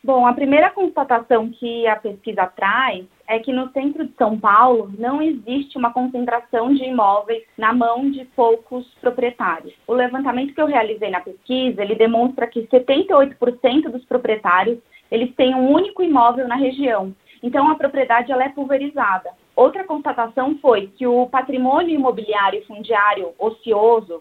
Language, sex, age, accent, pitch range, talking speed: Portuguese, female, 20-39, Brazilian, 220-260 Hz, 145 wpm